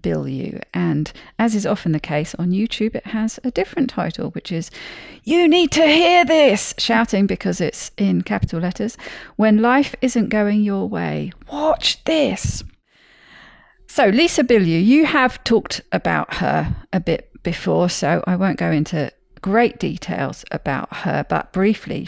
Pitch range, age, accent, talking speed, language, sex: 180-240 Hz, 40-59, British, 155 wpm, English, female